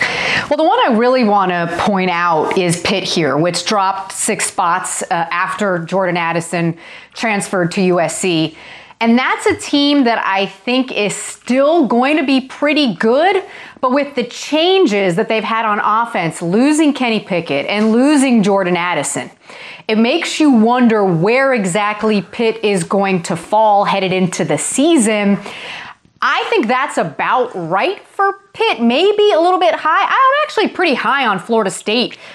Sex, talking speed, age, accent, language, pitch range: female, 160 wpm, 30-49, American, English, 180-250 Hz